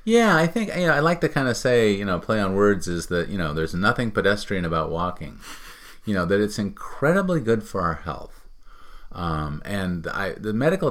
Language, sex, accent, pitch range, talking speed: English, male, American, 100-155 Hz, 200 wpm